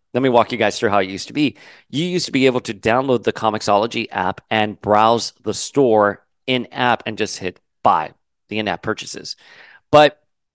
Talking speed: 195 wpm